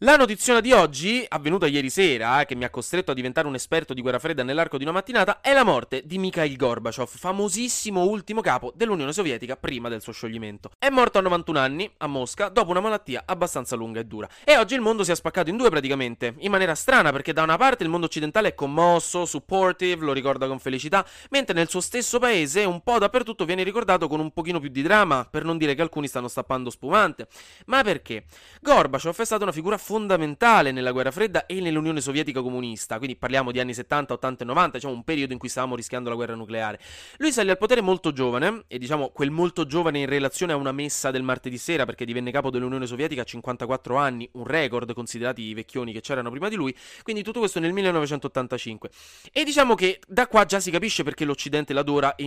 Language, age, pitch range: Italian, 20-39, 130-190 Hz